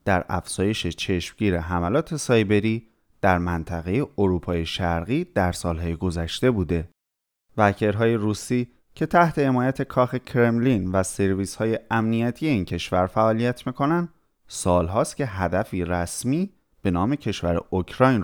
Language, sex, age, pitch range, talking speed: Persian, male, 30-49, 90-130 Hz, 115 wpm